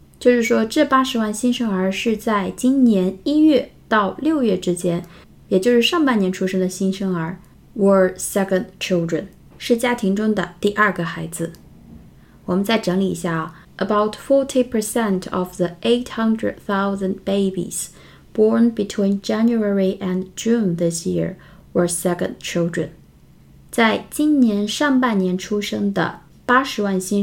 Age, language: 20-39, Chinese